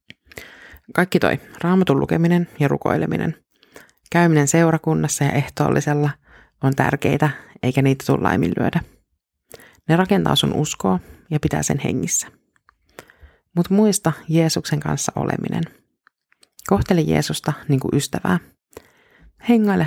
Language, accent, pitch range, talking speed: Finnish, native, 140-175 Hz, 105 wpm